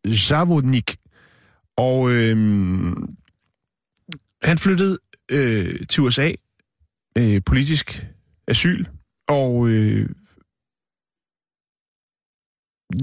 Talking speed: 60 wpm